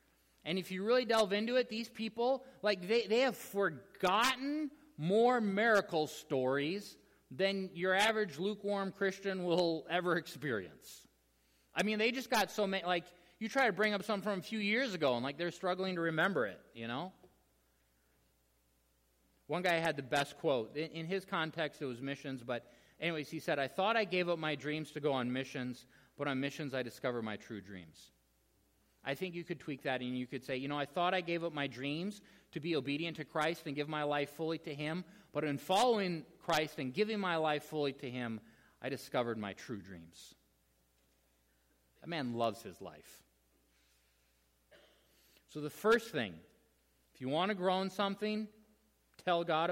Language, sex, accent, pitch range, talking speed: English, male, American, 125-195 Hz, 185 wpm